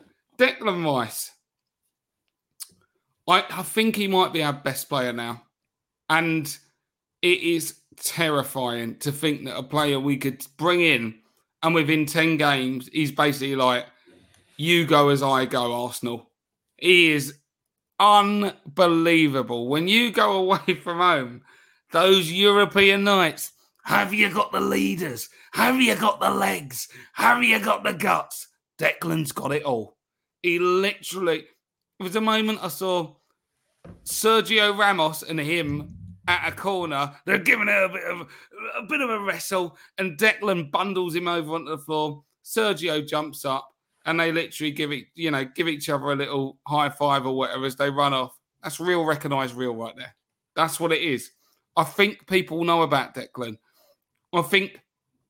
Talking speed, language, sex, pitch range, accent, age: 155 wpm, English, male, 140-190 Hz, British, 30-49